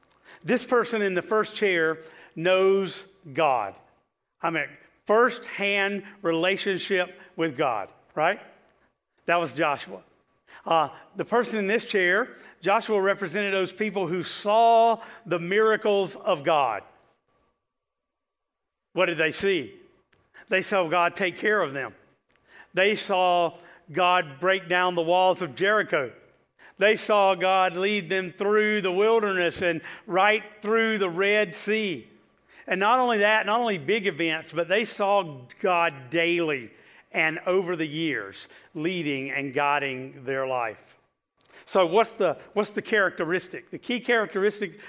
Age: 50-69